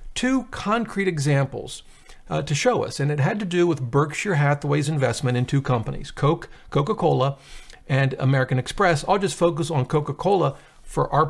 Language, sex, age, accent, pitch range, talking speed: English, male, 50-69, American, 135-180 Hz, 165 wpm